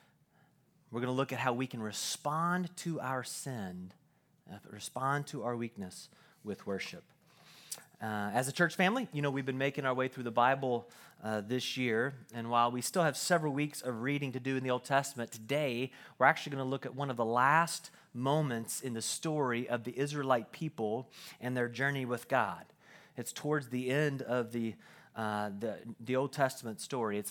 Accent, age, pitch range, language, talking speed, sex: American, 30-49, 115-145 Hz, English, 195 wpm, male